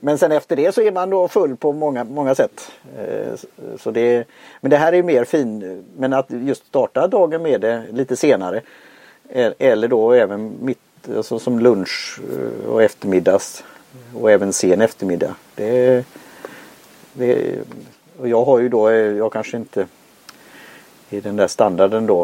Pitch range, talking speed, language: 110-150 Hz, 160 wpm, Swedish